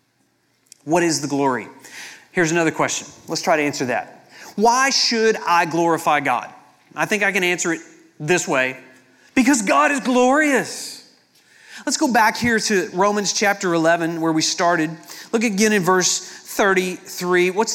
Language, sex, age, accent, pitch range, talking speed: English, male, 30-49, American, 180-225 Hz, 155 wpm